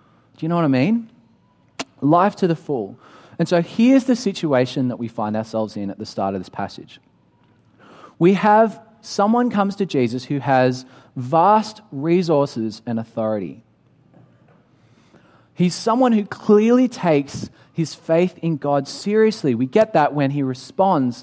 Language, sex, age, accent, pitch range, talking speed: English, male, 30-49, Australian, 130-190 Hz, 155 wpm